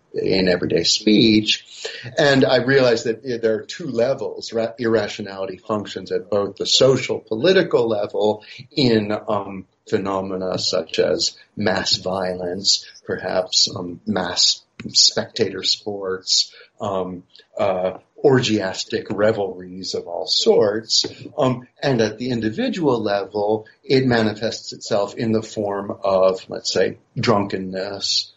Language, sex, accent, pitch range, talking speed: English, male, American, 95-125 Hz, 115 wpm